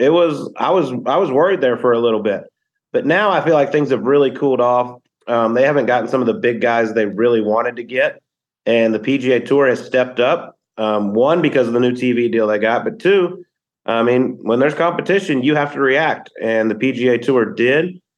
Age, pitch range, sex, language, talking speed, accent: 30-49, 115-150 Hz, male, English, 230 wpm, American